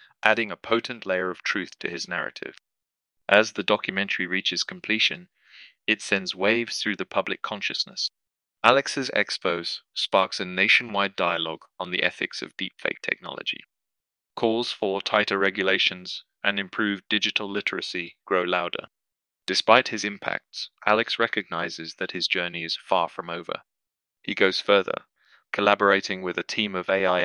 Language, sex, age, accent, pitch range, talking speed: English, male, 30-49, British, 90-105 Hz, 140 wpm